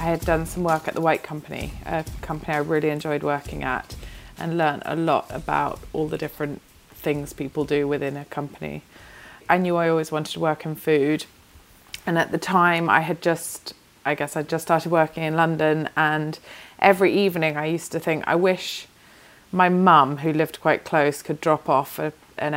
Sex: female